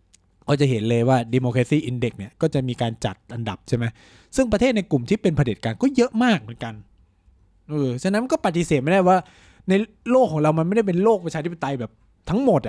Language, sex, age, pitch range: Thai, male, 20-39, 115-160 Hz